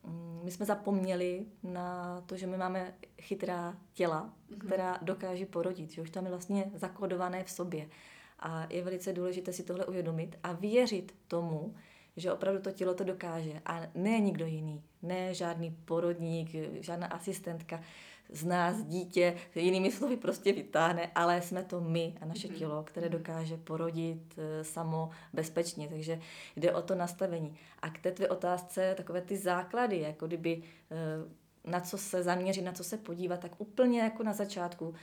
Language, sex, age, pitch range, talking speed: Slovak, female, 20-39, 170-190 Hz, 160 wpm